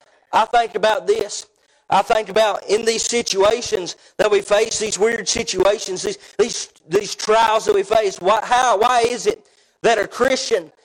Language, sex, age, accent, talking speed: English, male, 40-59, American, 170 wpm